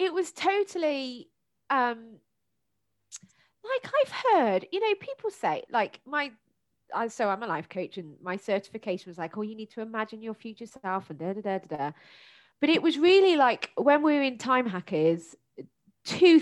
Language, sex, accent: English, female, British